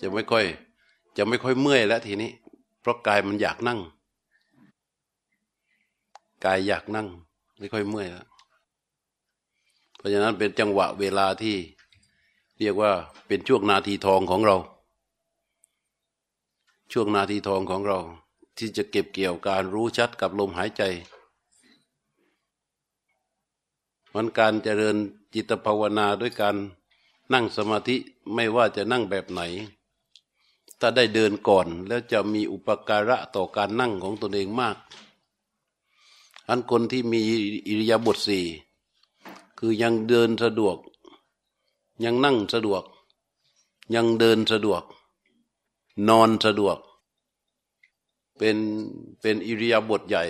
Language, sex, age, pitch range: Thai, male, 60-79, 100-115 Hz